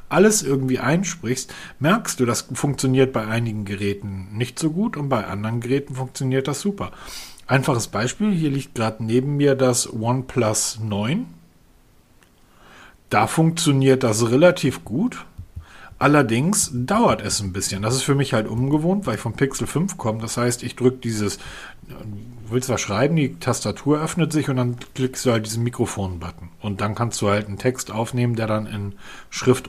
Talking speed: 170 wpm